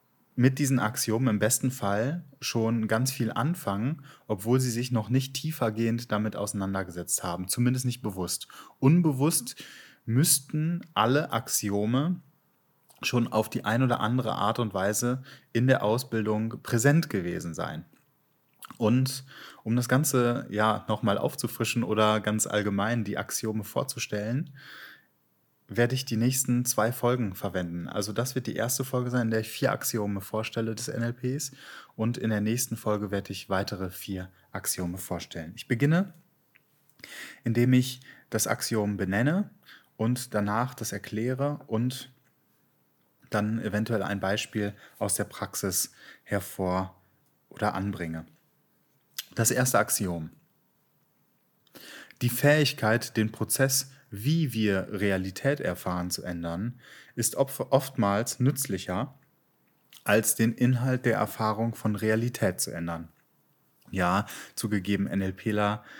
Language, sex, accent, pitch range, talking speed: German, male, German, 105-130 Hz, 125 wpm